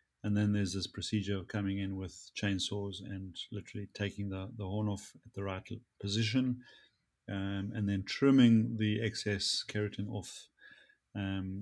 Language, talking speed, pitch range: English, 155 wpm, 100-115 Hz